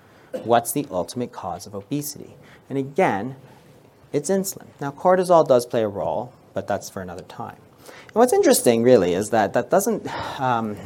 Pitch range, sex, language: 125-180 Hz, male, English